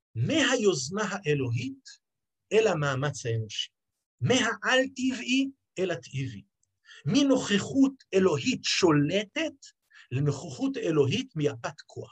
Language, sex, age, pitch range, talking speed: Hebrew, male, 50-69, 120-195 Hz, 75 wpm